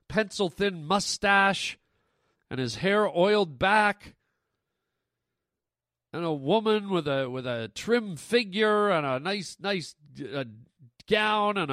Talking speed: 125 wpm